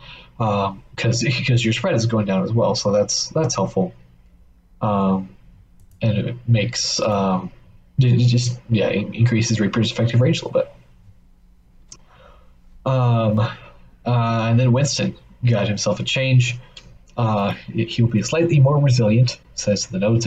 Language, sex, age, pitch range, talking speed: English, male, 30-49, 95-120 Hz, 145 wpm